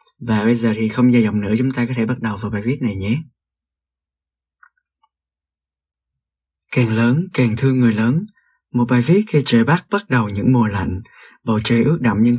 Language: Vietnamese